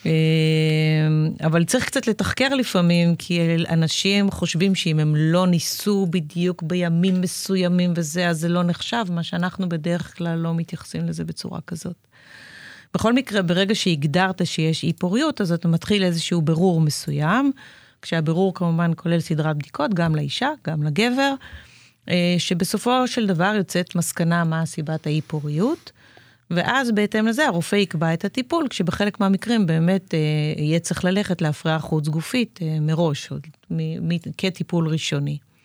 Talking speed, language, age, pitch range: 140 wpm, Hebrew, 30-49, 160-190 Hz